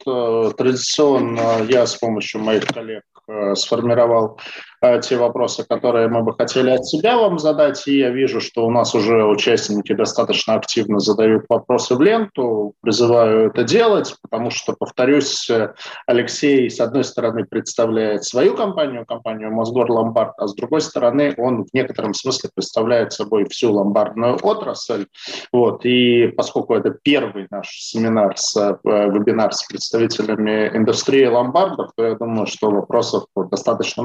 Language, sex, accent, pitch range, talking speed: Russian, male, native, 110-135 Hz, 135 wpm